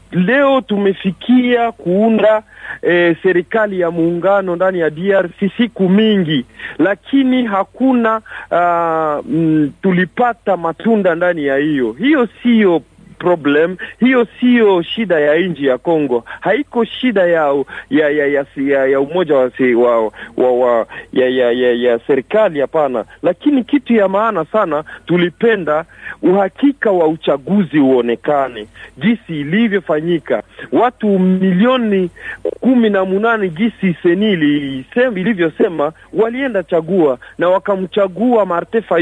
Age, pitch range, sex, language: 50-69, 155-225 Hz, male, Swahili